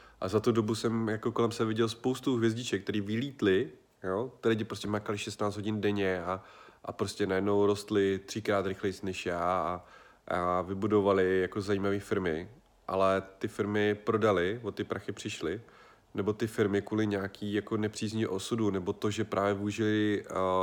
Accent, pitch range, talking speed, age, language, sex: native, 95-110 Hz, 165 wpm, 30-49, Czech, male